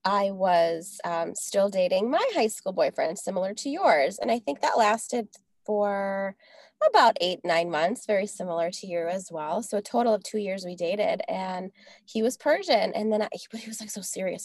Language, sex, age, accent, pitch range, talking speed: English, female, 20-39, American, 190-230 Hz, 200 wpm